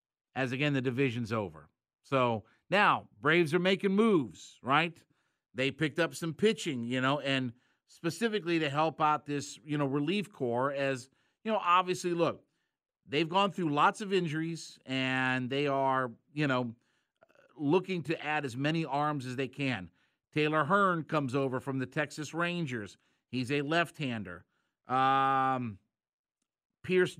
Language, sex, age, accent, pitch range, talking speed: English, male, 50-69, American, 130-165 Hz, 145 wpm